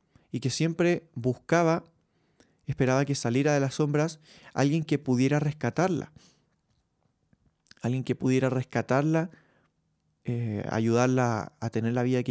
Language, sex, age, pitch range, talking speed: Spanish, male, 20-39, 120-155 Hz, 120 wpm